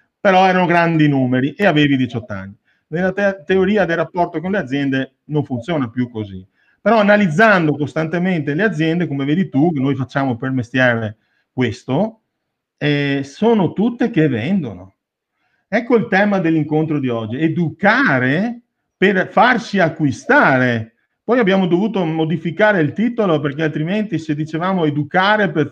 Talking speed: 140 wpm